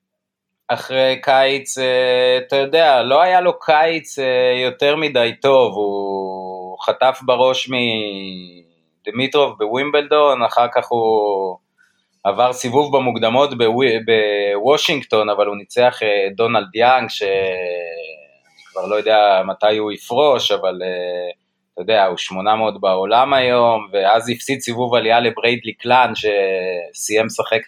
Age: 30-49